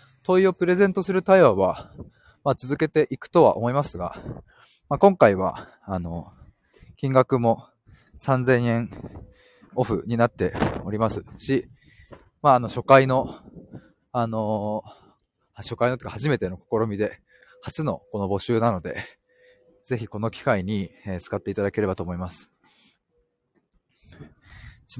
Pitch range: 105-145 Hz